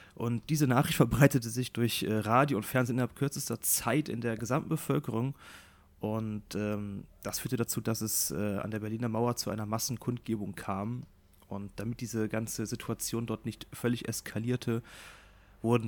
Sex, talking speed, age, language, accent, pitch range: male, 160 wpm, 30-49, German, German, 100-120 Hz